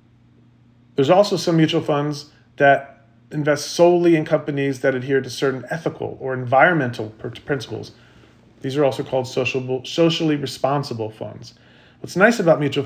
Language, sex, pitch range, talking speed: English, male, 125-160 Hz, 135 wpm